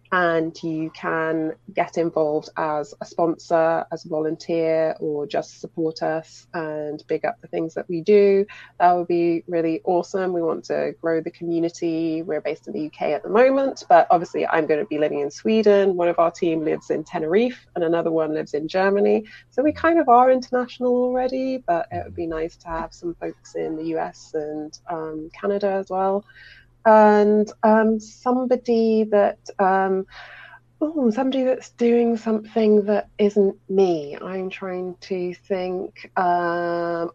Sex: female